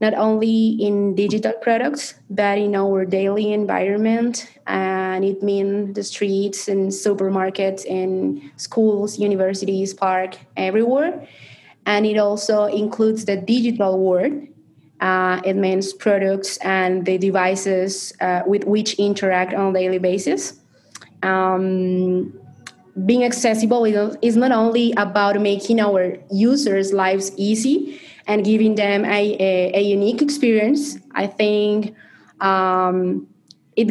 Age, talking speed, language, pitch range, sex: 20-39, 120 wpm, English, 190-225 Hz, female